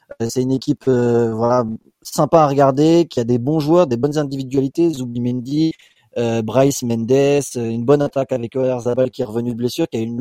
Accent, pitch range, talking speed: French, 120-150 Hz, 210 wpm